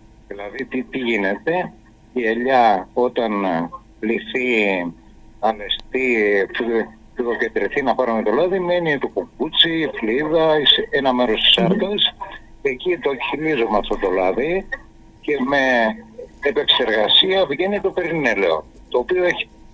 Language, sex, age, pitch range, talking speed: Greek, male, 60-79, 110-180 Hz, 110 wpm